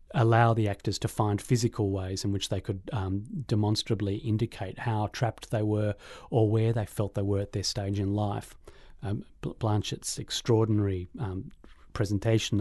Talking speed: 160 wpm